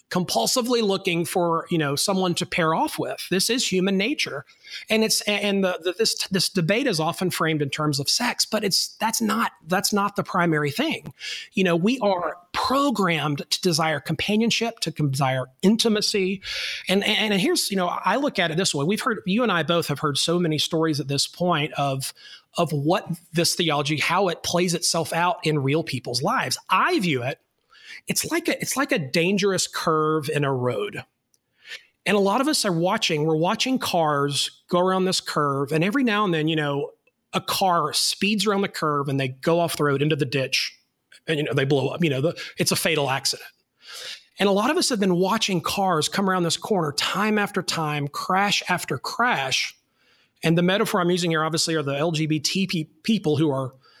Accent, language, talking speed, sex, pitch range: American, English, 205 wpm, male, 155-200 Hz